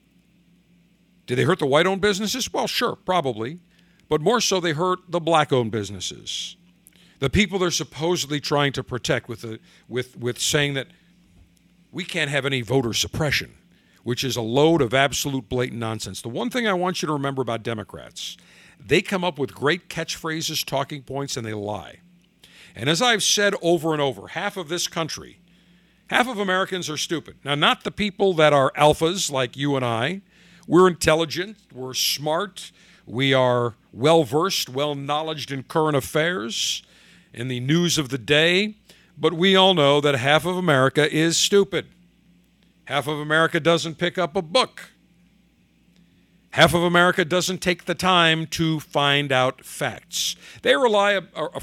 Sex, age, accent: male, 50-69, American